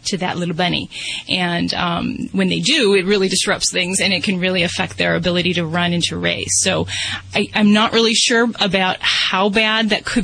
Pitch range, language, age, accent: 180-215 Hz, English, 30-49, American